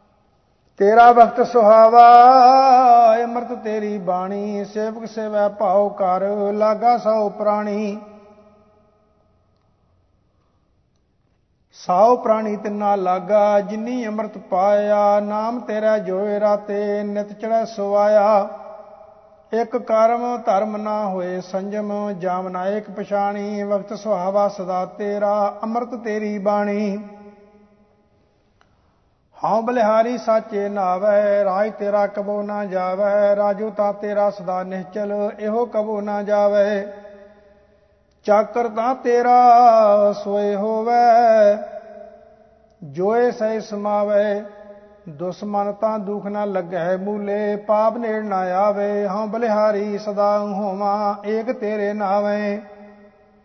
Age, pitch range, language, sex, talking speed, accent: 50-69, 205-215 Hz, English, male, 90 wpm, Indian